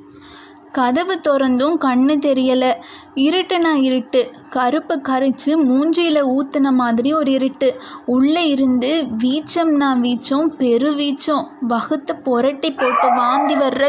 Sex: female